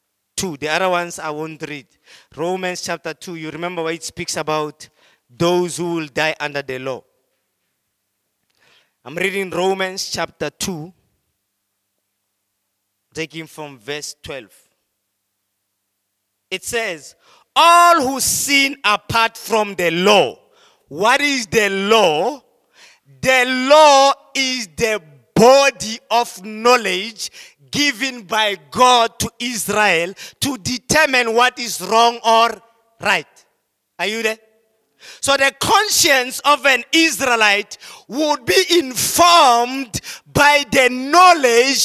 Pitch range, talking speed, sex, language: 160-270 Hz, 110 wpm, male, English